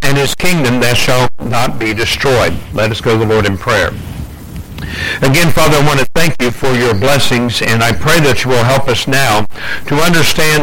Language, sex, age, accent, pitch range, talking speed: English, male, 60-79, American, 120-145 Hz, 210 wpm